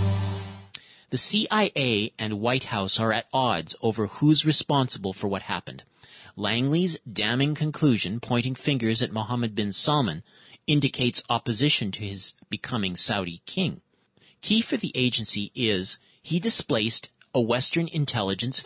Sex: male